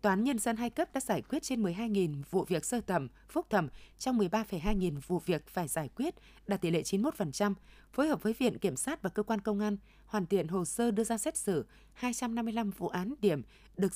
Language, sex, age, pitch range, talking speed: Vietnamese, female, 20-39, 180-235 Hz, 225 wpm